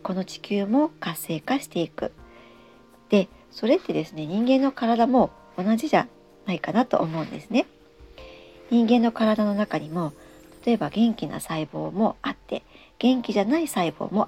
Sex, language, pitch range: male, Japanese, 180-250 Hz